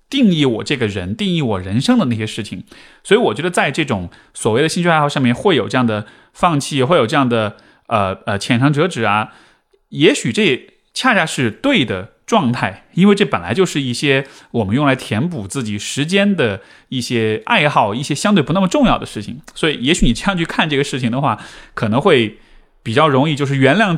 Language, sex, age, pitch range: Chinese, male, 20-39, 115-155 Hz